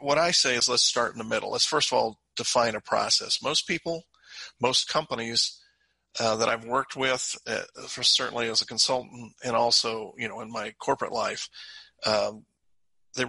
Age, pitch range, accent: 40-59, 115-150 Hz, American